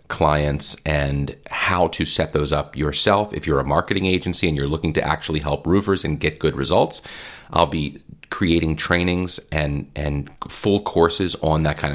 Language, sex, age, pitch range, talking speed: English, male, 40-59, 75-85 Hz, 175 wpm